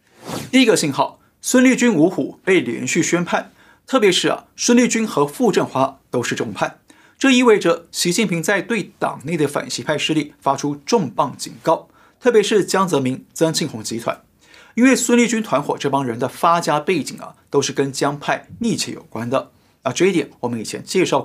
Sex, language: male, Chinese